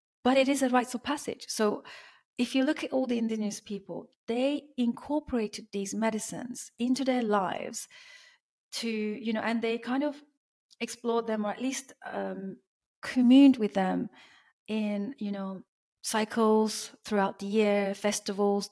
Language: English